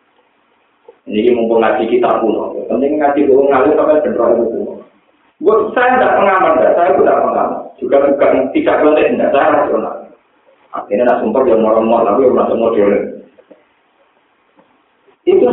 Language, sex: Indonesian, male